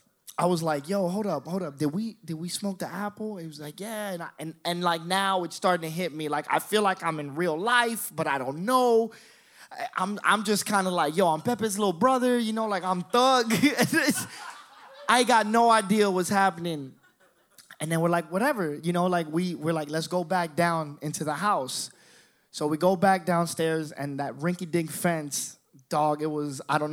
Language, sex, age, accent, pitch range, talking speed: English, male, 20-39, American, 145-190 Hz, 210 wpm